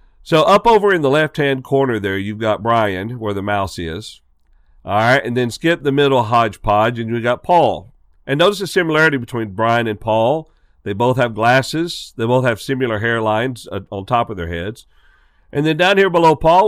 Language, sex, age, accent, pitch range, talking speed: English, male, 50-69, American, 95-125 Hz, 200 wpm